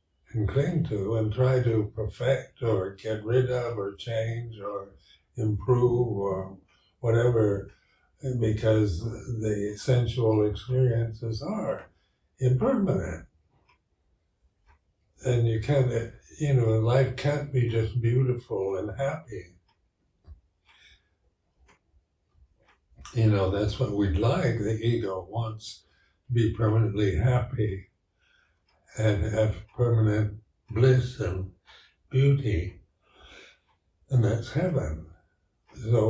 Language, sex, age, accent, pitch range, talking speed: English, male, 60-79, American, 100-120 Hz, 95 wpm